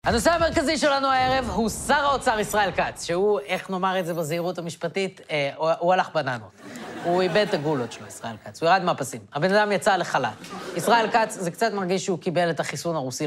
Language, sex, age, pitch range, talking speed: Hebrew, female, 20-39, 160-210 Hz, 200 wpm